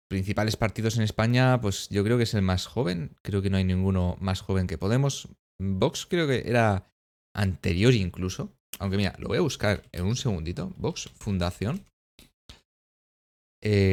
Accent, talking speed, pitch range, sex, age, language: Spanish, 170 wpm, 95-130 Hz, male, 20-39, Spanish